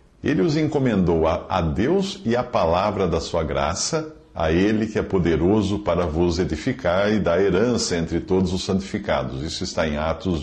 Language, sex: Portuguese, male